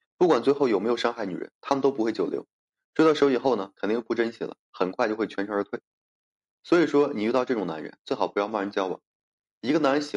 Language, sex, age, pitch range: Chinese, male, 20-39, 105-130 Hz